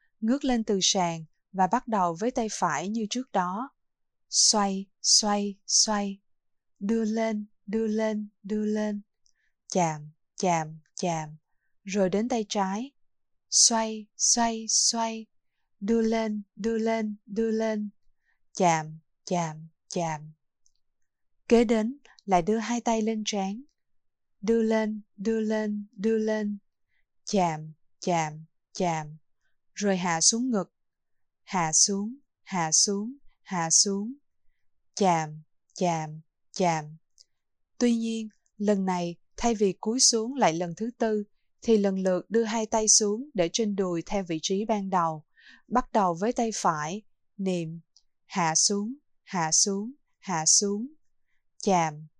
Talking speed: 130 wpm